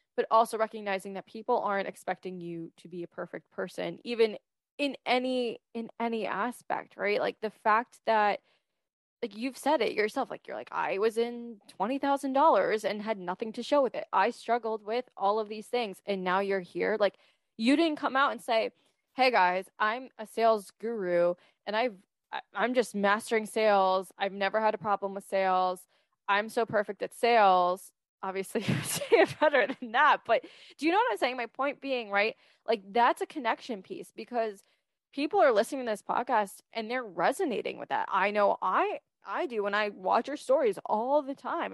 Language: English